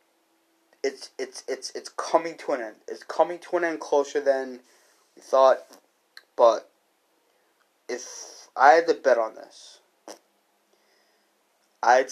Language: English